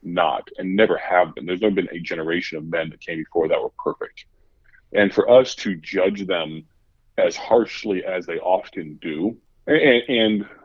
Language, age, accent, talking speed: English, 30-49, American, 180 wpm